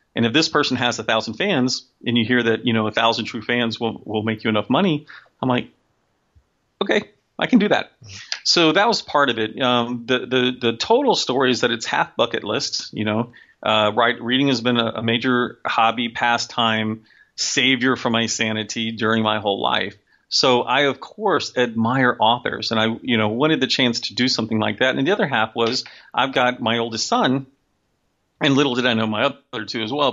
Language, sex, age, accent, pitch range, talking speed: English, male, 40-59, American, 110-130 Hz, 210 wpm